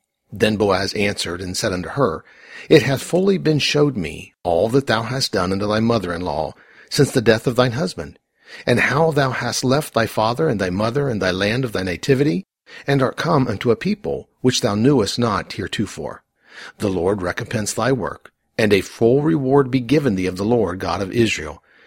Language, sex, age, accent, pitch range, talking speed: English, male, 50-69, American, 100-135 Hz, 200 wpm